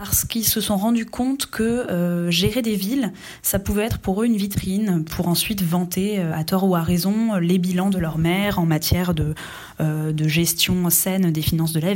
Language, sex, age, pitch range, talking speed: French, female, 20-39, 165-205 Hz, 210 wpm